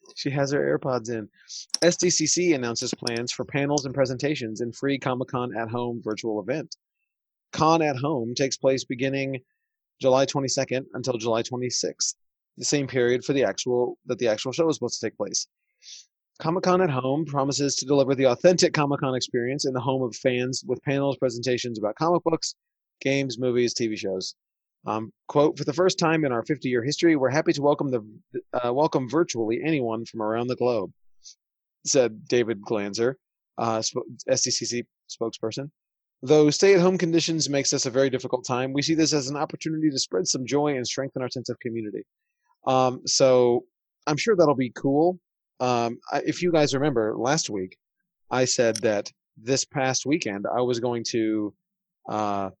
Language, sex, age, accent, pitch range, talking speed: English, male, 30-49, American, 120-155 Hz, 175 wpm